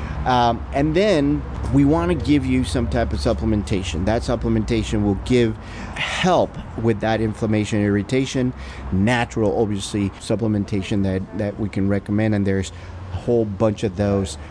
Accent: American